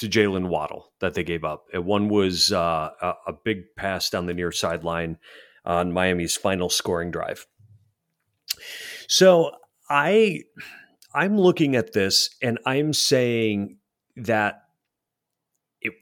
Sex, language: male, English